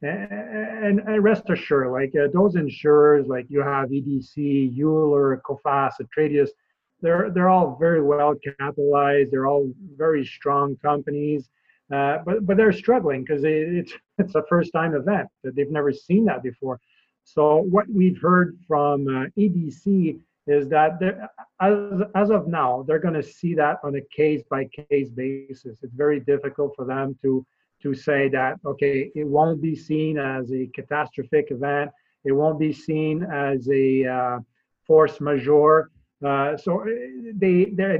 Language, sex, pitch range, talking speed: English, male, 140-175 Hz, 155 wpm